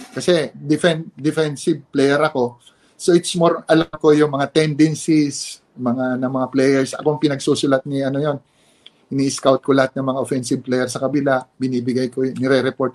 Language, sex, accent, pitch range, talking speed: English, male, Filipino, 135-170 Hz, 165 wpm